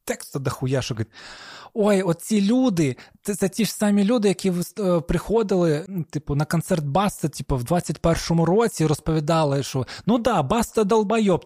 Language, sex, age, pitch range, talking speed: Ukrainian, male, 20-39, 155-225 Hz, 155 wpm